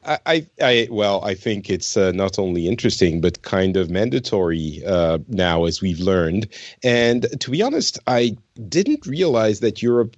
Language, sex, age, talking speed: English, male, 40-59, 165 wpm